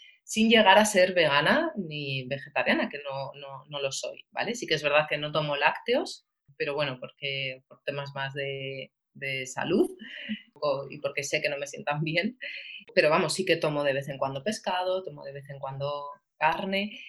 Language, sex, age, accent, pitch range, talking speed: English, female, 30-49, Spanish, 150-205 Hz, 195 wpm